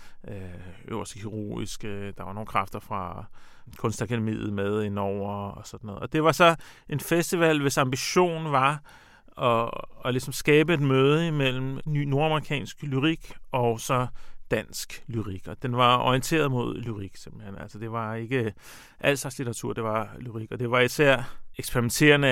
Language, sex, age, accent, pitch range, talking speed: Danish, male, 40-59, native, 110-140 Hz, 155 wpm